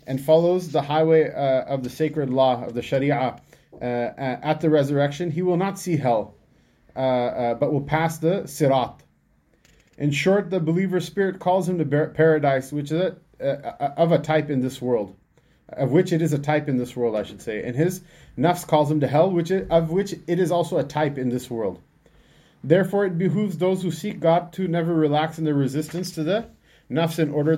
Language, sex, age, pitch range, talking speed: English, male, 30-49, 125-165 Hz, 210 wpm